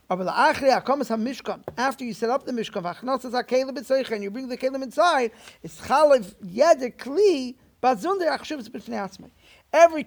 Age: 50-69